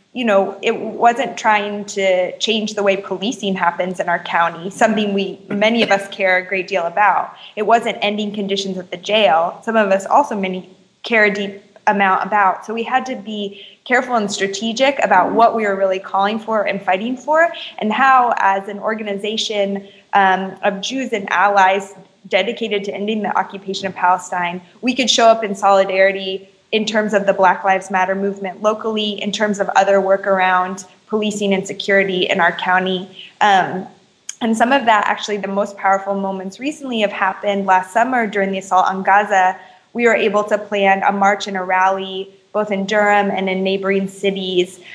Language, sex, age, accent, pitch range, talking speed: English, female, 20-39, American, 190-210 Hz, 185 wpm